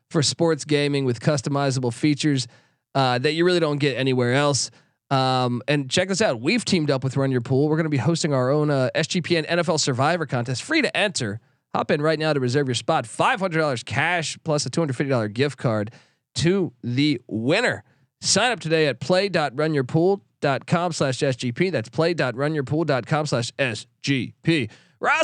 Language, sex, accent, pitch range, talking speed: English, male, American, 135-175 Hz, 170 wpm